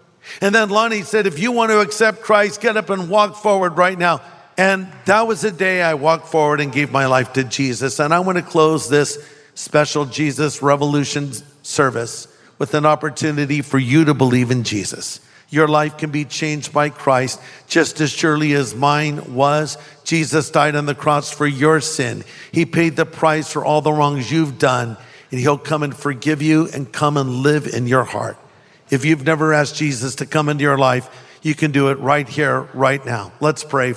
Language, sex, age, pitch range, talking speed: English, male, 50-69, 140-170 Hz, 200 wpm